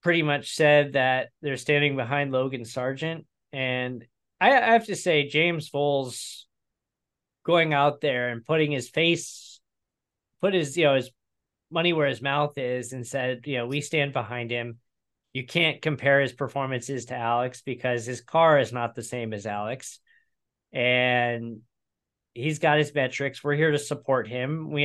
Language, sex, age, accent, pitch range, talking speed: English, male, 20-39, American, 120-155 Hz, 165 wpm